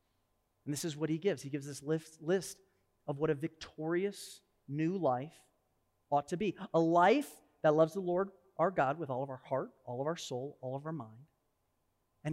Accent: American